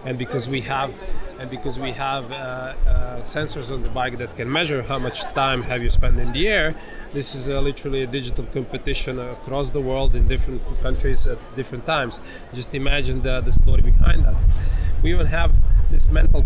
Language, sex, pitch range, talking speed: English, male, 85-135 Hz, 195 wpm